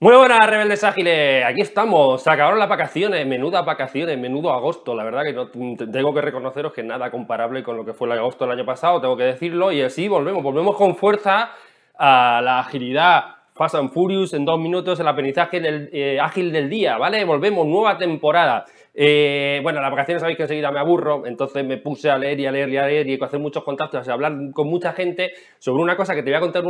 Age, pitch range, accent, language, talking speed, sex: 20-39, 135-175 Hz, Spanish, Spanish, 235 wpm, male